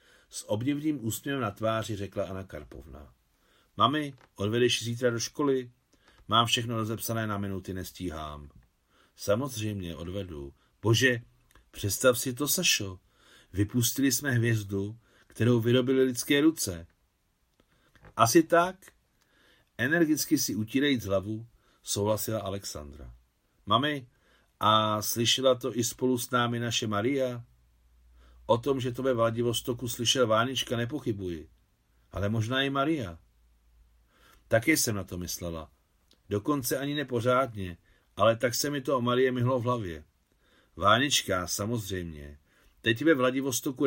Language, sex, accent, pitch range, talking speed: Czech, male, native, 95-130 Hz, 120 wpm